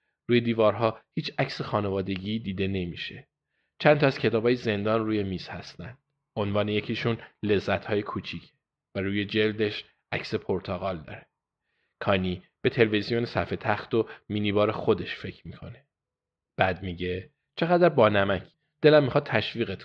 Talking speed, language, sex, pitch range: 135 wpm, Persian, male, 95-135 Hz